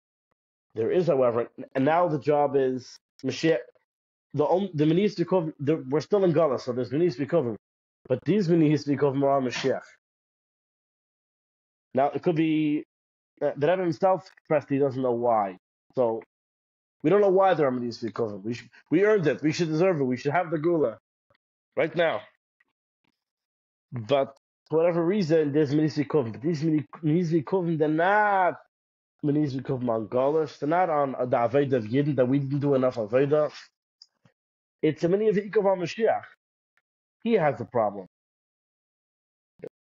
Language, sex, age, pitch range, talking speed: English, male, 30-49, 125-160 Hz, 150 wpm